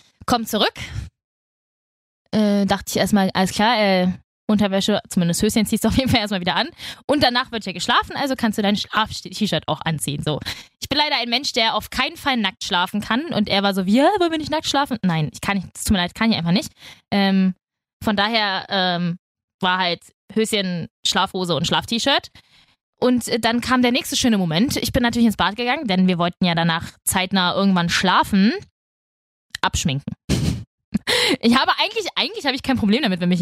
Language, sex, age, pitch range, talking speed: German, female, 20-39, 185-235 Hz, 200 wpm